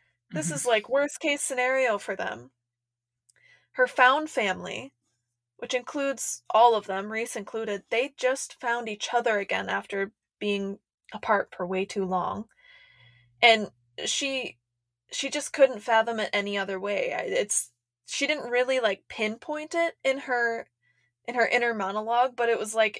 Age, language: 20-39, English